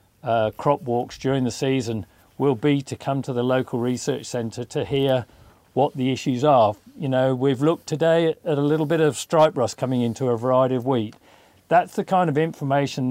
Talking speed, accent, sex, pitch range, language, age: 205 wpm, British, male, 120-145 Hz, English, 40-59